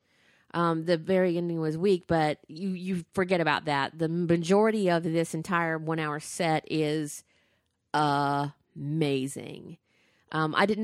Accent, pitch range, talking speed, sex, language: American, 145-185 Hz, 135 wpm, female, English